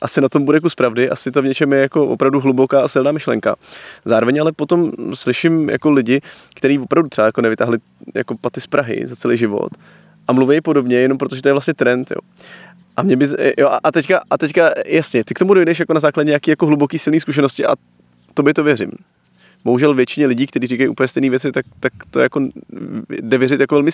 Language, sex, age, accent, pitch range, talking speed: Czech, male, 20-39, native, 125-155 Hz, 215 wpm